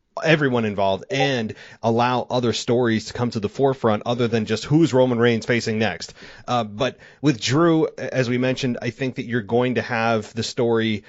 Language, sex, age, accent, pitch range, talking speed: English, male, 30-49, American, 105-130 Hz, 190 wpm